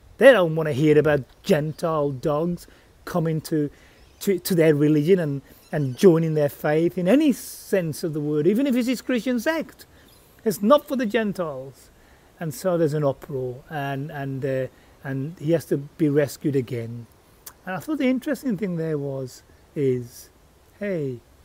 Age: 40-59